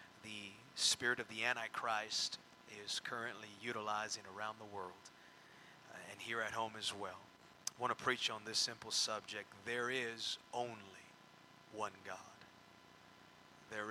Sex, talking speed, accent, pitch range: male, 135 wpm, American, 110-125 Hz